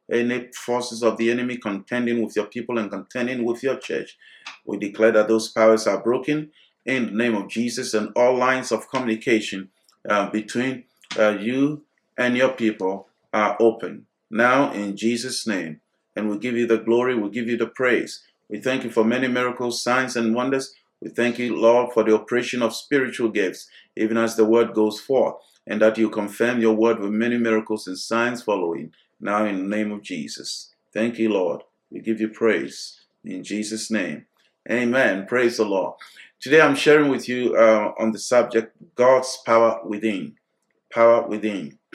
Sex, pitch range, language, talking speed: male, 110-125 Hz, English, 180 wpm